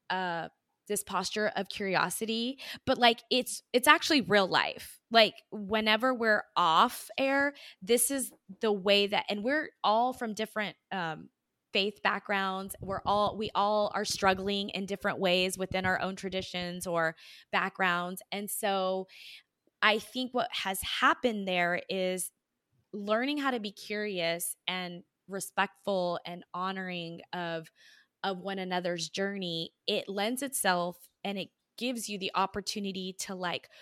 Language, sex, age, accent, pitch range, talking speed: English, female, 20-39, American, 190-230 Hz, 140 wpm